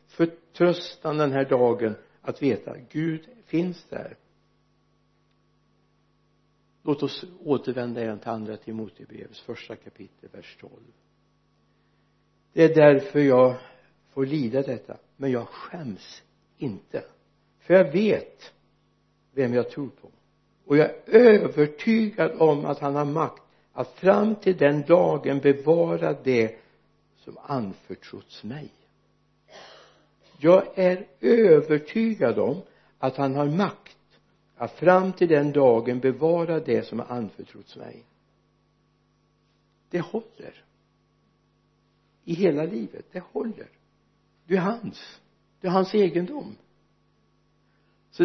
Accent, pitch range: native, 125-180 Hz